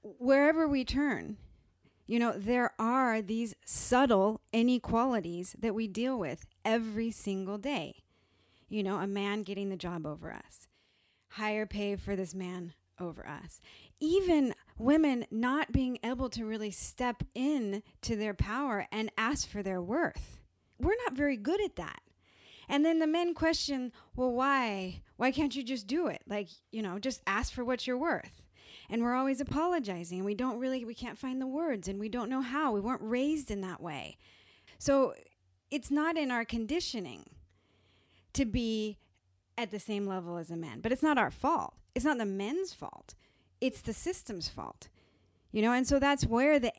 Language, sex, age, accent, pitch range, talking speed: English, female, 30-49, American, 195-265 Hz, 175 wpm